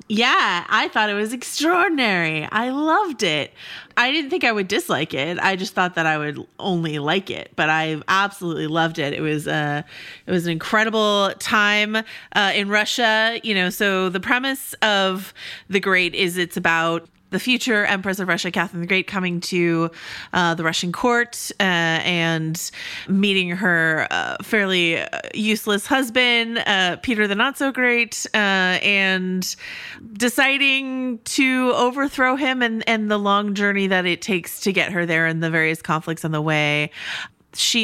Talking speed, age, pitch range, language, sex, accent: 165 wpm, 30-49, 170-225 Hz, English, female, American